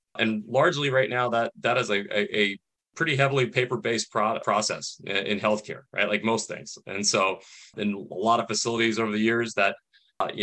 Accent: American